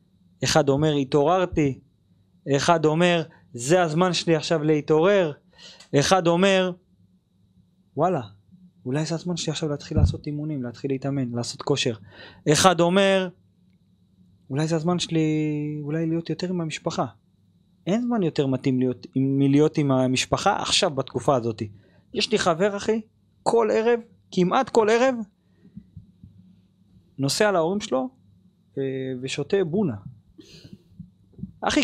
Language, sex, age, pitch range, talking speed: Hebrew, male, 30-49, 125-180 Hz, 115 wpm